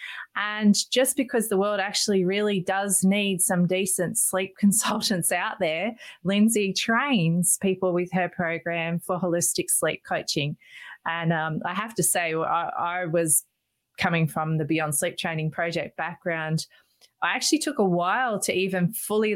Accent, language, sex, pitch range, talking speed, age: Australian, English, female, 165-210 Hz, 155 wpm, 20-39